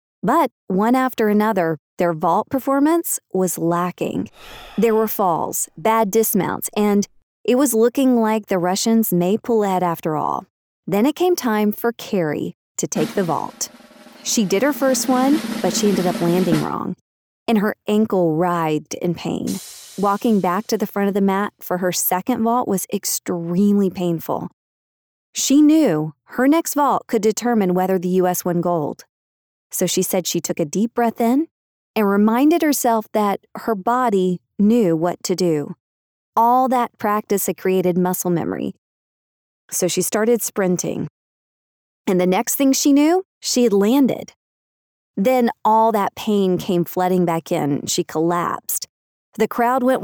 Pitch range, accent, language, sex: 180-235 Hz, American, English, female